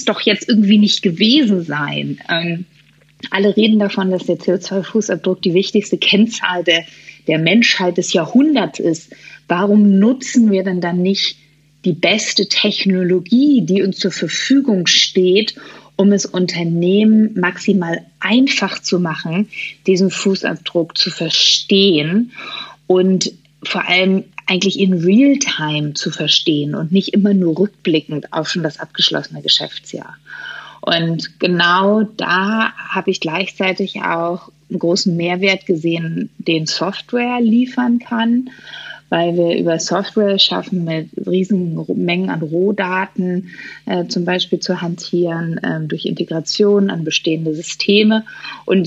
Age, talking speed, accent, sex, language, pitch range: 30-49, 125 wpm, German, female, German, 170-205 Hz